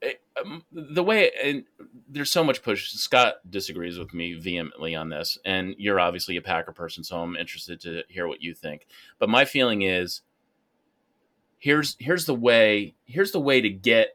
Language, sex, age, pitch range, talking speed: English, male, 30-49, 90-125 Hz, 180 wpm